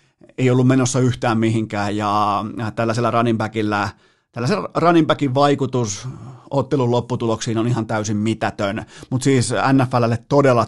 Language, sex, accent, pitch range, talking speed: Finnish, male, native, 110-135 Hz, 120 wpm